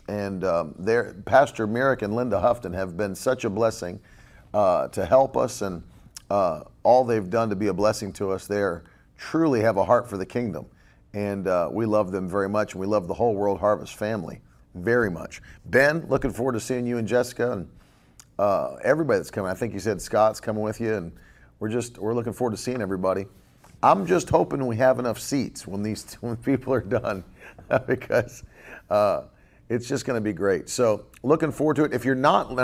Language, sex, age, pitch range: English, male, 40-59, 105-135 Hz